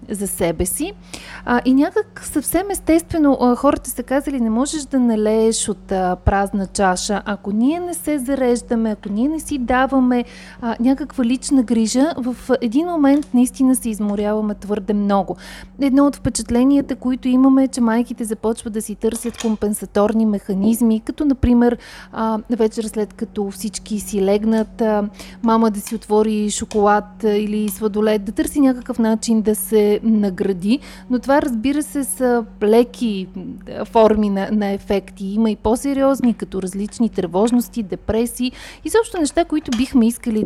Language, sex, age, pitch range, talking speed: Bulgarian, female, 30-49, 210-275 Hz, 155 wpm